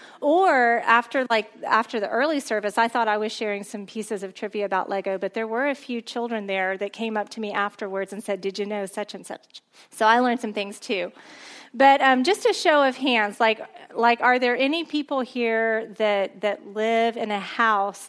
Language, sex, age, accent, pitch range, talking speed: English, female, 30-49, American, 205-255 Hz, 215 wpm